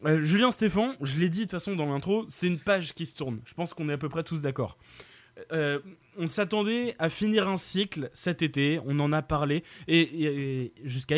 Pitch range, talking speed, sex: 140-195 Hz, 230 wpm, male